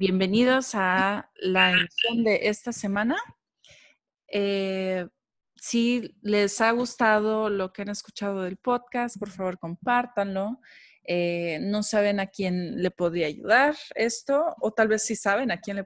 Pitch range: 195-245 Hz